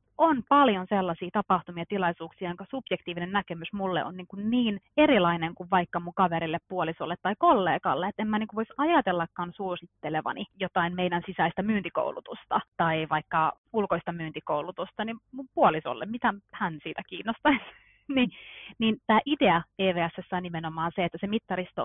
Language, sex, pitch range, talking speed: Finnish, female, 170-220 Hz, 150 wpm